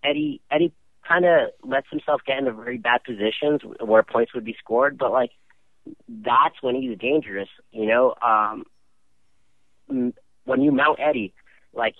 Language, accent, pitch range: English, American, 100-125 Hz